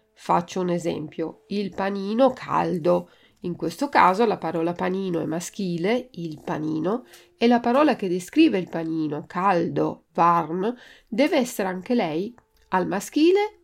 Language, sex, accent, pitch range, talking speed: Italian, female, native, 170-240 Hz, 135 wpm